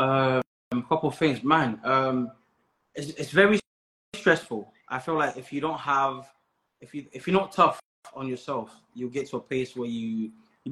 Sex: male